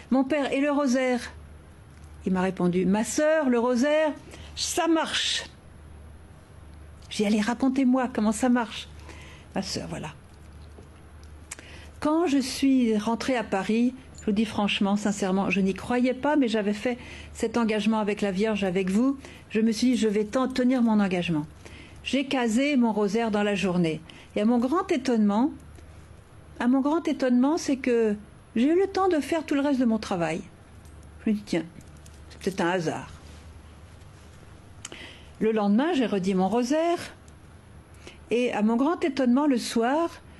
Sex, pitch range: female, 185-270 Hz